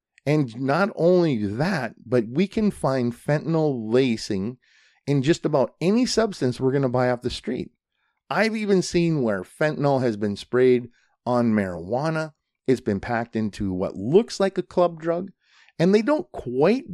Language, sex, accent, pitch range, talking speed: English, male, American, 120-170 Hz, 165 wpm